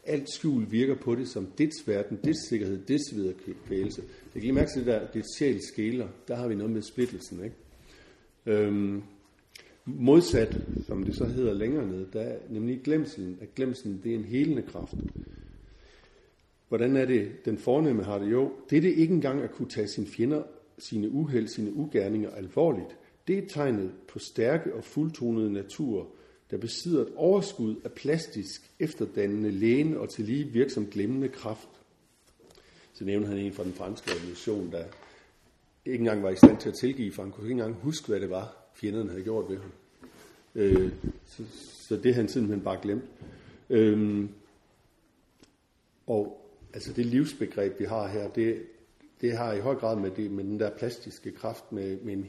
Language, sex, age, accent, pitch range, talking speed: Danish, male, 60-79, native, 100-130 Hz, 175 wpm